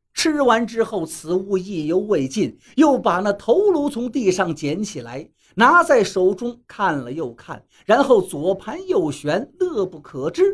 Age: 50-69